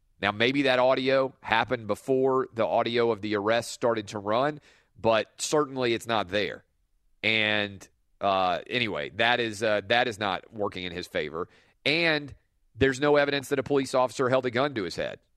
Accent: American